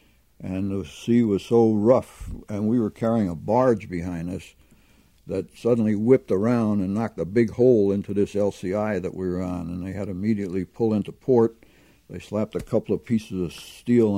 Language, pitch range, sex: English, 90-110 Hz, male